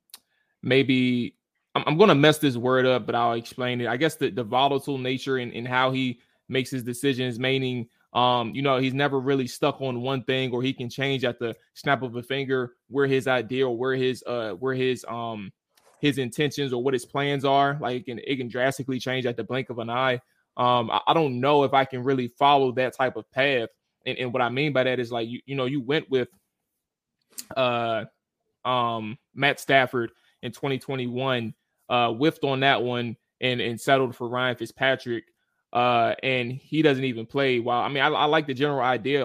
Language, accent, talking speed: English, American, 205 wpm